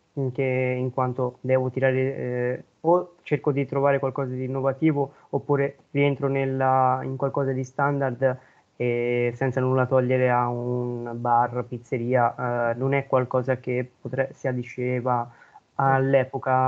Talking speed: 135 wpm